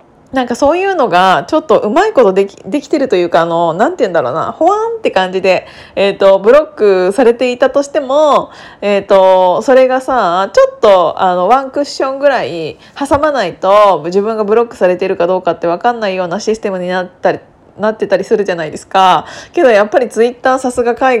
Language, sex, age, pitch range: Japanese, female, 20-39, 195-285 Hz